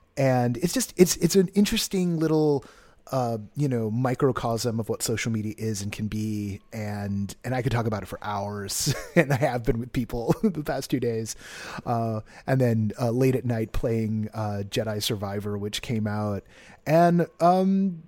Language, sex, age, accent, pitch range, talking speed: English, male, 30-49, American, 110-150 Hz, 185 wpm